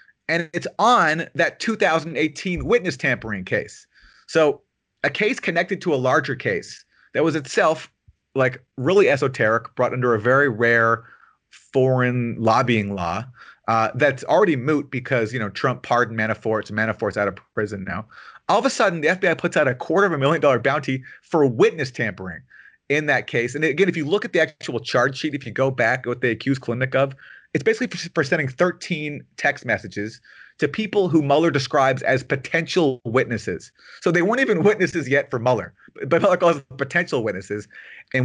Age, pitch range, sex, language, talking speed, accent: 30-49, 120-170 Hz, male, English, 180 wpm, American